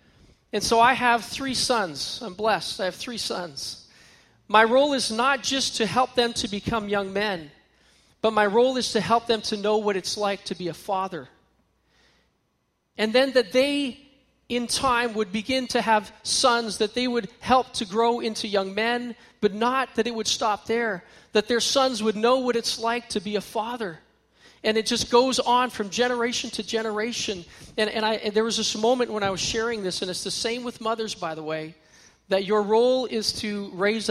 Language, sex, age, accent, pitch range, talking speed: English, male, 40-59, American, 195-235 Hz, 205 wpm